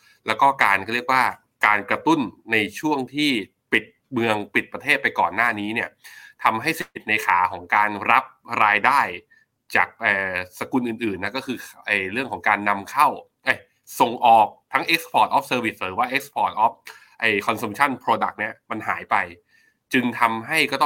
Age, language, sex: 20-39, Thai, male